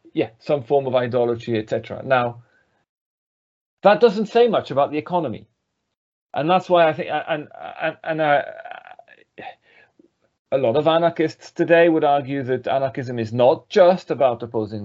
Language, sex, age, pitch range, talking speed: English, male, 40-59, 120-160 Hz, 150 wpm